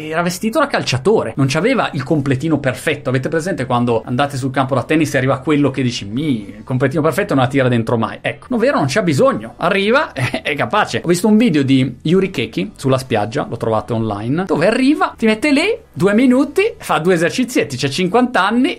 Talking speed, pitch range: 215 wpm, 125-185 Hz